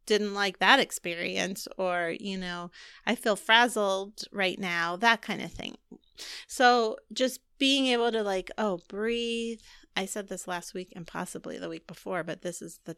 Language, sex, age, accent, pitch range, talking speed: English, female, 30-49, American, 185-230 Hz, 175 wpm